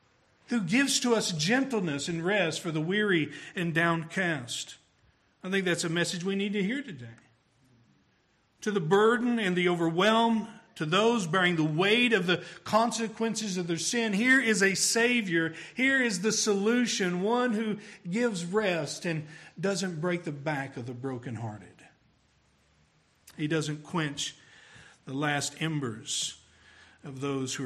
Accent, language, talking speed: American, English, 150 wpm